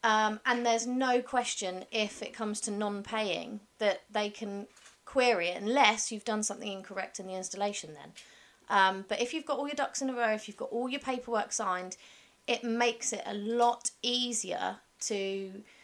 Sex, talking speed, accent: female, 185 wpm, British